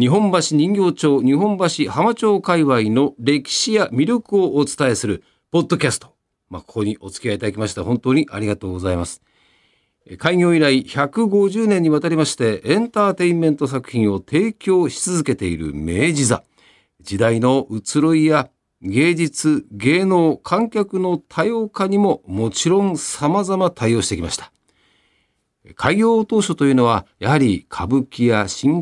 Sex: male